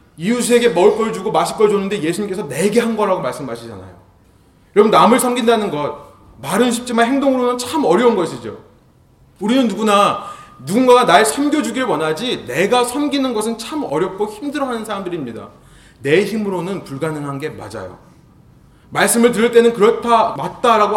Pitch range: 160-245 Hz